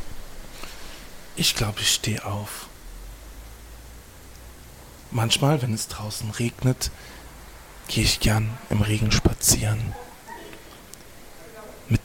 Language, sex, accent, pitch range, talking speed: German, male, German, 90-120 Hz, 85 wpm